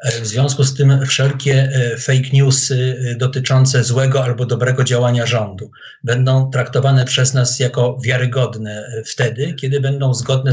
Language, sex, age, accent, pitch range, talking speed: Polish, male, 50-69, native, 130-150 Hz, 130 wpm